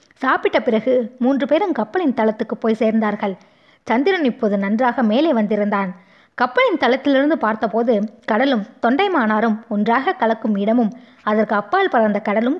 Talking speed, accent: 110 wpm, native